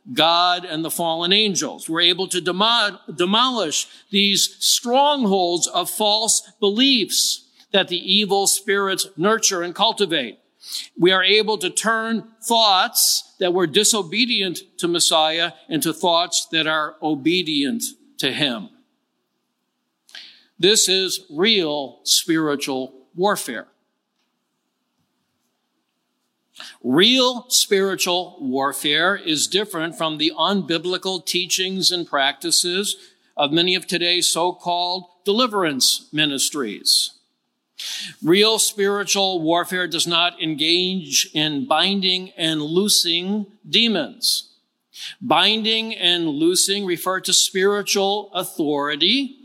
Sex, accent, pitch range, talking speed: male, American, 170-210 Hz, 100 wpm